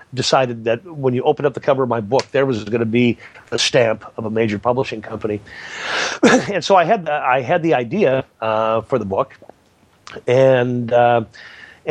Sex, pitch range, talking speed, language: male, 115-145 Hz, 190 wpm, English